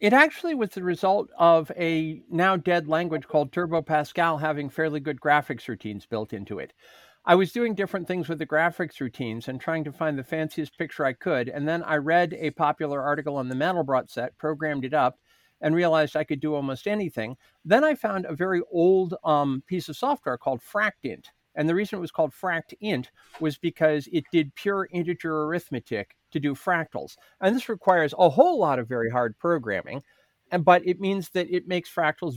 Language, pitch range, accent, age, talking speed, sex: English, 150-185 Hz, American, 50-69, 195 wpm, male